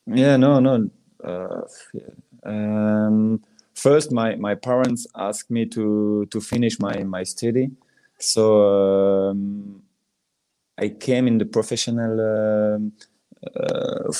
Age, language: 20-39, English